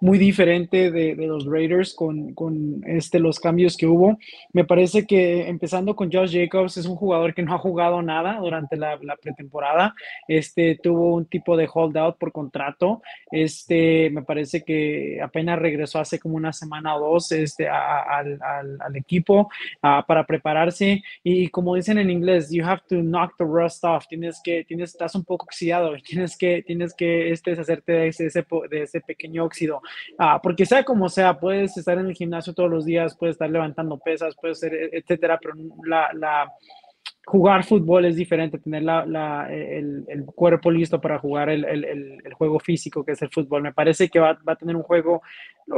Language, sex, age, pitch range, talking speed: English, male, 20-39, 155-175 Hz, 195 wpm